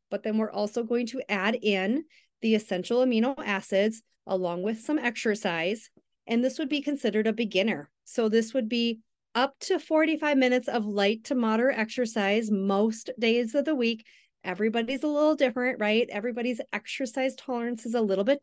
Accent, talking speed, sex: American, 175 wpm, female